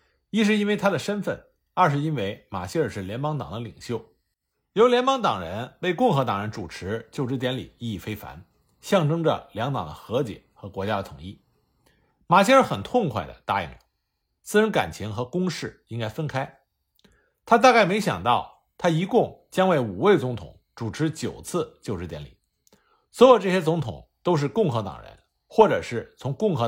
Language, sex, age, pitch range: Chinese, male, 50-69, 110-185 Hz